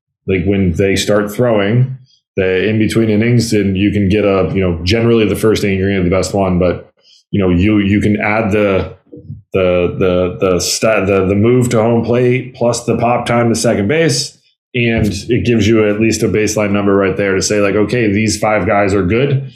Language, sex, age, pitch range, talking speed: English, male, 20-39, 100-115 Hz, 210 wpm